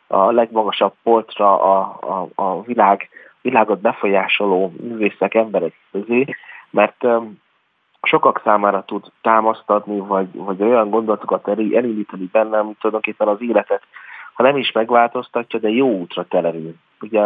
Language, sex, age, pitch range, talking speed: Hungarian, male, 30-49, 100-115 Hz, 120 wpm